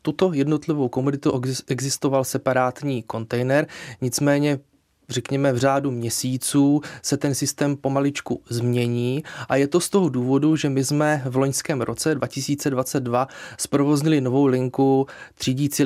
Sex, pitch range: male, 125-145 Hz